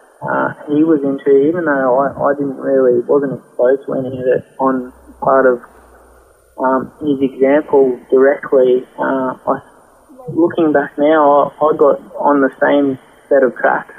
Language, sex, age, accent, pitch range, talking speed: English, male, 20-39, Australian, 130-140 Hz, 160 wpm